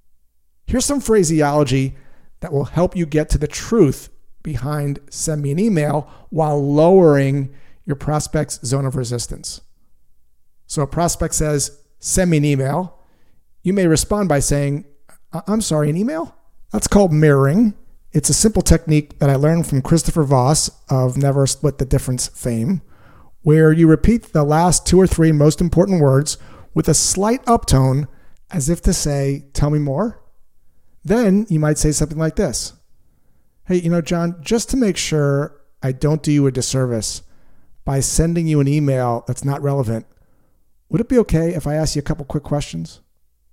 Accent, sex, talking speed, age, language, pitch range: American, male, 170 wpm, 40-59, English, 135-165 Hz